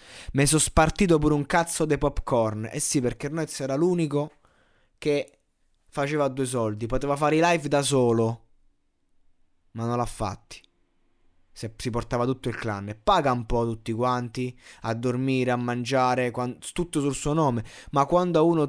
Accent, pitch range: native, 115-140 Hz